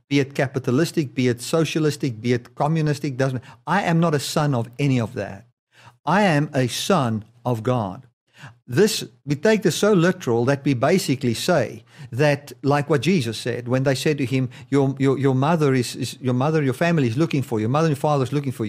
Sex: male